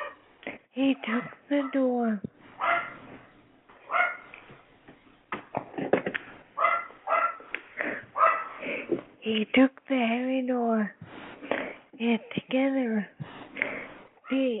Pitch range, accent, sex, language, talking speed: 230-270 Hz, American, female, English, 50 wpm